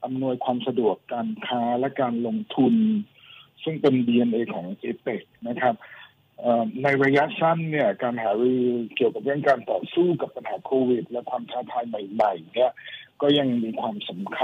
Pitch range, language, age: 125-150 Hz, Thai, 60-79